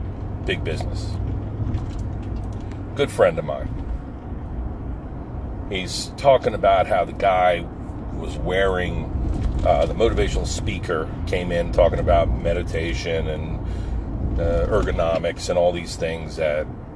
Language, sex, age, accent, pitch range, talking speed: English, male, 40-59, American, 85-110 Hz, 110 wpm